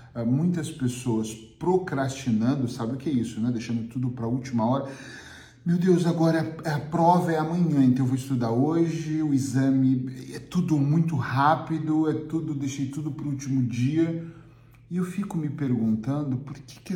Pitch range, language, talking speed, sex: 120-150 Hz, Portuguese, 175 wpm, male